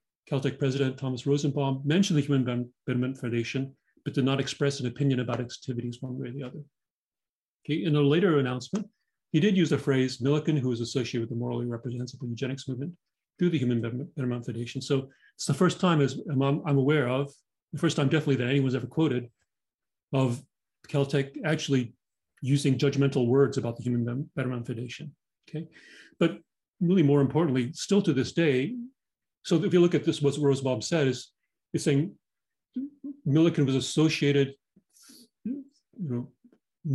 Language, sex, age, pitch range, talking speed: English, male, 40-59, 130-160 Hz, 170 wpm